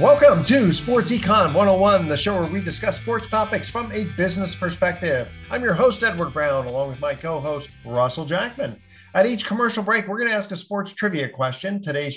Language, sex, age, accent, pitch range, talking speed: English, male, 50-69, American, 130-190 Hz, 195 wpm